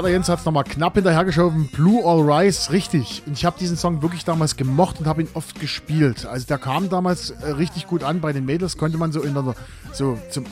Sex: male